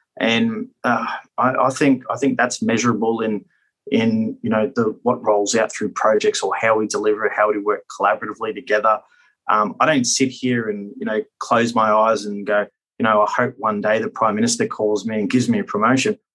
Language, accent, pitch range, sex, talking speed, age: English, Australian, 105-130 Hz, male, 210 wpm, 20-39